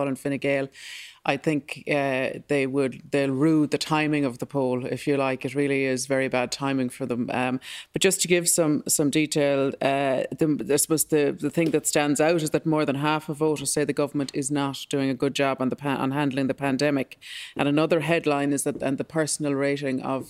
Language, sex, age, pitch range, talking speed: English, female, 30-49, 135-150 Hz, 225 wpm